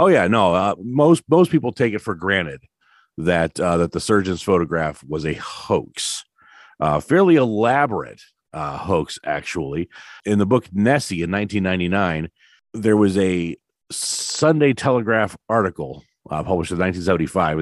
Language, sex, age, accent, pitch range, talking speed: English, male, 40-59, American, 90-115 Hz, 145 wpm